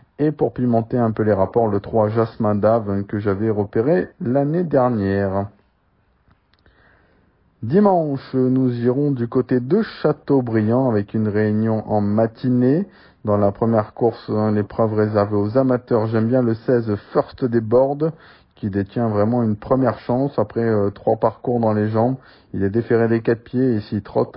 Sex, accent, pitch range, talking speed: male, French, 105-130 Hz, 165 wpm